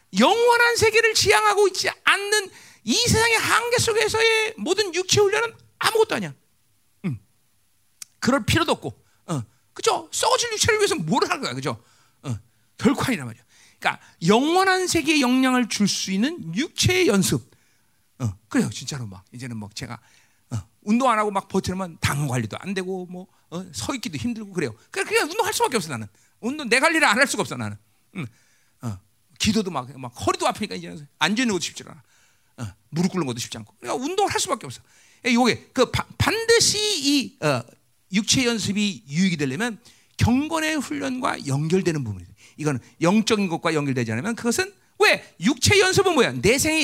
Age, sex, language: 40-59, male, Korean